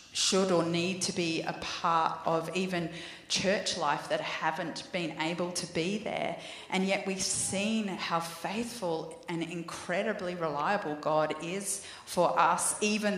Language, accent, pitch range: English, Australian, 170-190 Hz